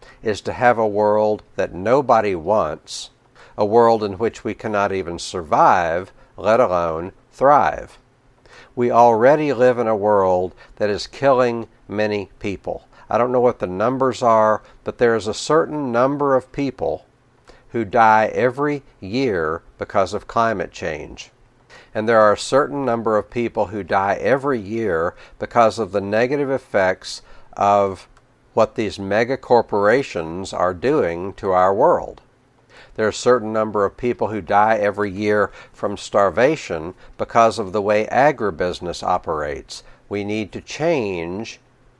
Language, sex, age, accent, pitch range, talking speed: English, male, 60-79, American, 105-125 Hz, 145 wpm